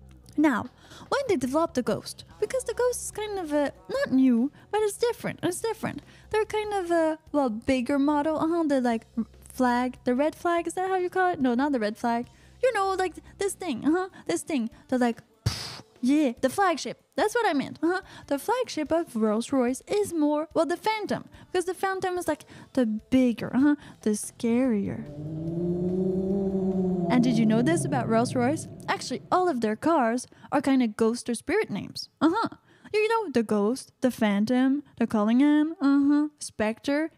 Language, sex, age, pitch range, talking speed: English, female, 10-29, 235-340 Hz, 190 wpm